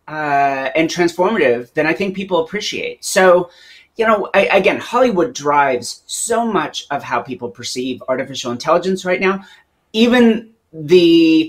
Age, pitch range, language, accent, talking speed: 30-49, 145-195 Hz, English, American, 135 wpm